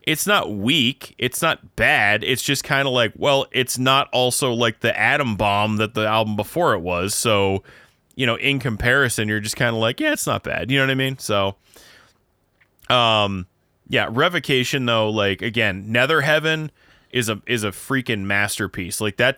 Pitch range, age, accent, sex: 100-130 Hz, 20-39, American, male